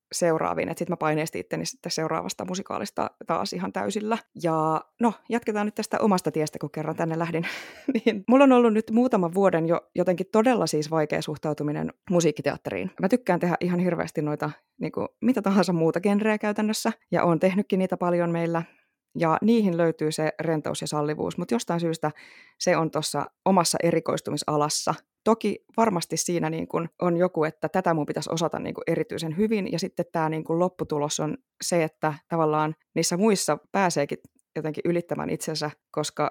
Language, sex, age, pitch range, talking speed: Finnish, female, 20-39, 160-205 Hz, 160 wpm